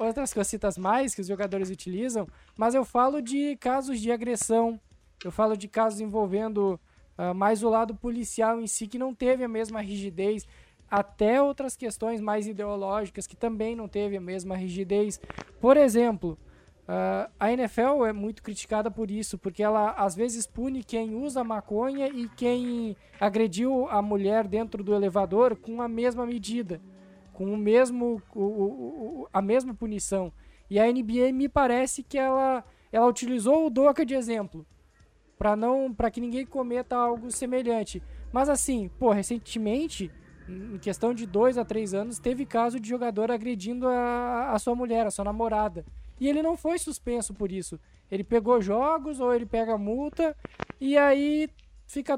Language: Portuguese